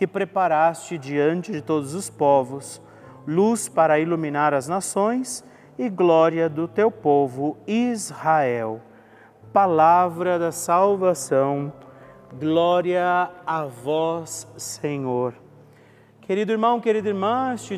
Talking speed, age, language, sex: 100 wpm, 40-59, Portuguese, male